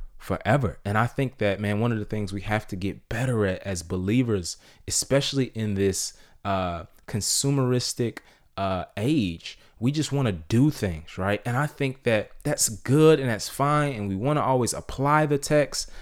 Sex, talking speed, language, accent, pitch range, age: male, 185 wpm, English, American, 95-135 Hz, 30-49